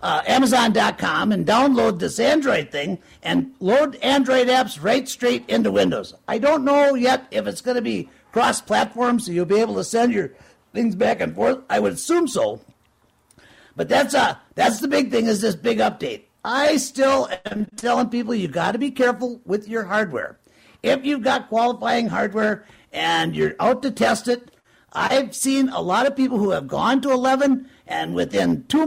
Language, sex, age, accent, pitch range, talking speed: English, male, 50-69, American, 220-270 Hz, 185 wpm